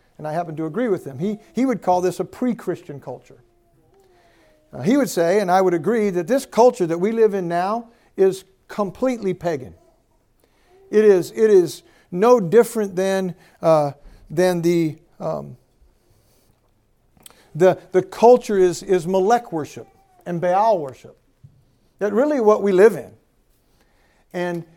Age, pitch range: 60-79, 170-225 Hz